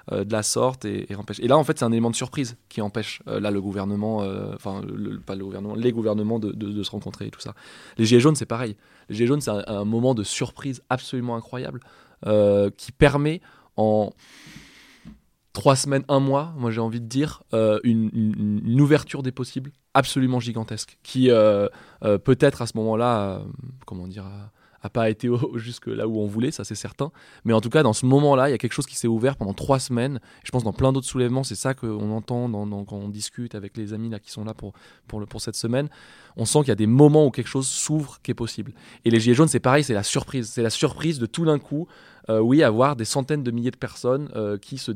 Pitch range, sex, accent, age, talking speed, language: 105-130 Hz, male, French, 20-39, 245 wpm, French